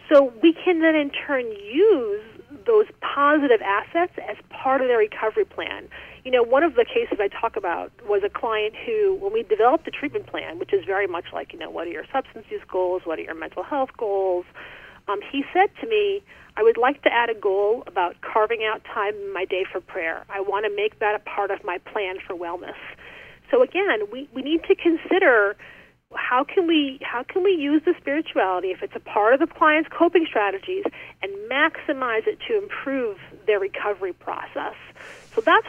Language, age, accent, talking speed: English, 40-59, American, 205 wpm